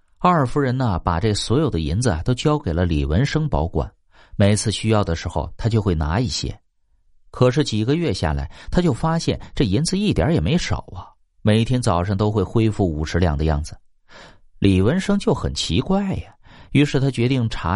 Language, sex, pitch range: Chinese, male, 90-135 Hz